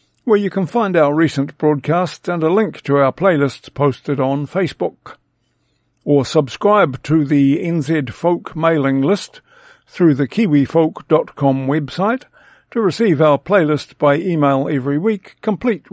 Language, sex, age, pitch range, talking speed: English, male, 50-69, 145-185 Hz, 140 wpm